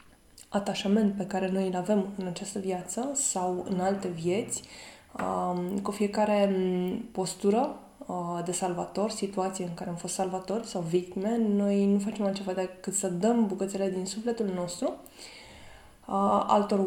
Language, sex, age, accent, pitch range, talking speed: Romanian, female, 20-39, native, 180-205 Hz, 135 wpm